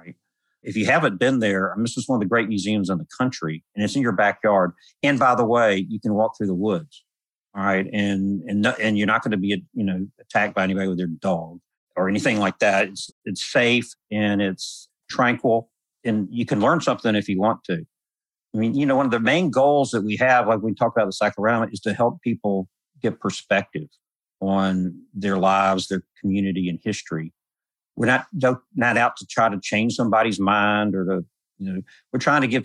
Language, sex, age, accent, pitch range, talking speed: English, male, 50-69, American, 95-110 Hz, 215 wpm